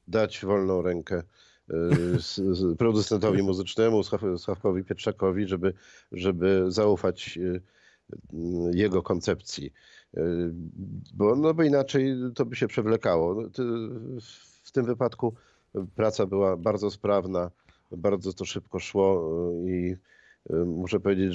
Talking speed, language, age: 95 wpm, Polish, 50-69